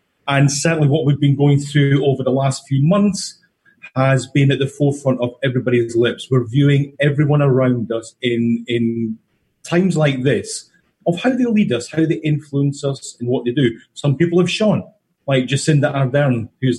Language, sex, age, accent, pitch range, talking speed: English, male, 40-59, British, 130-160 Hz, 185 wpm